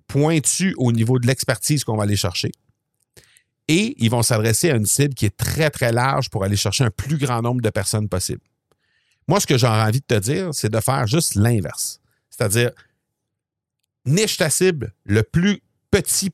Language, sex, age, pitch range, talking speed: French, male, 50-69, 110-145 Hz, 185 wpm